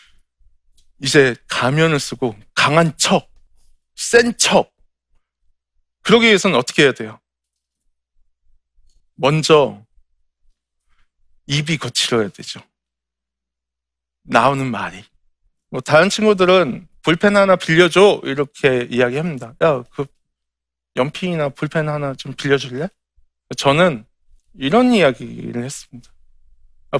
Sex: male